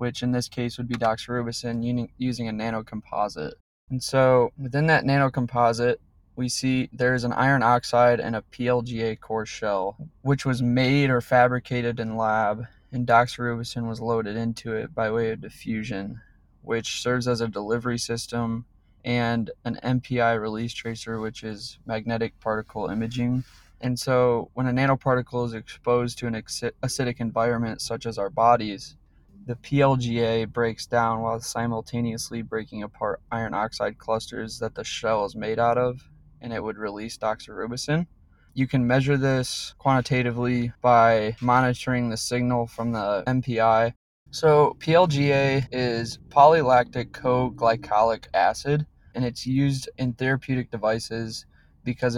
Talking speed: 140 wpm